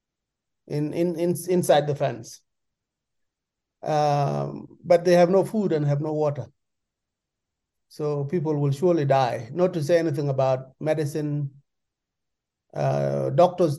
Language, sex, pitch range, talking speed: English, male, 135-165 Hz, 125 wpm